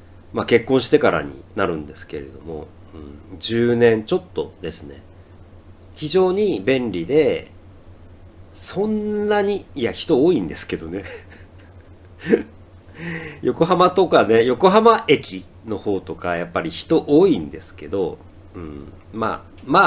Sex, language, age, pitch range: male, Japanese, 50-69, 90-125 Hz